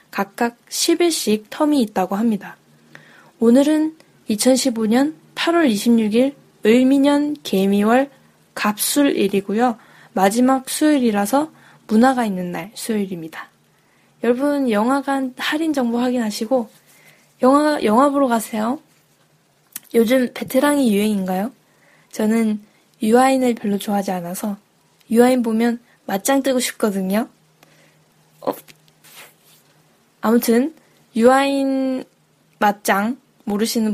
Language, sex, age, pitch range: Korean, female, 10-29, 205-265 Hz